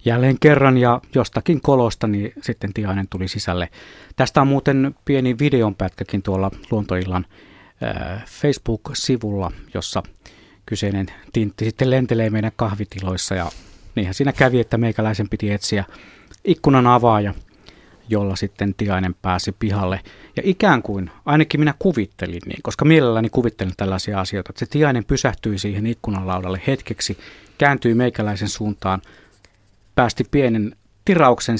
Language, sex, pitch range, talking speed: Finnish, male, 100-125 Hz, 125 wpm